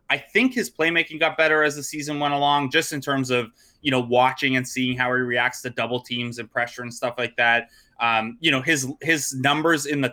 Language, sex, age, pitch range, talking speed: English, male, 20-39, 120-140 Hz, 235 wpm